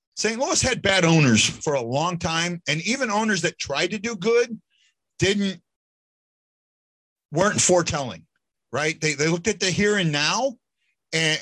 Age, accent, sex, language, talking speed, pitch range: 40-59, American, male, English, 160 wpm, 130-180 Hz